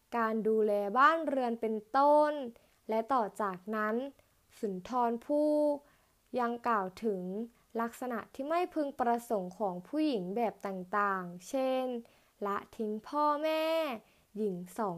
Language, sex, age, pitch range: Thai, female, 20-39, 215-260 Hz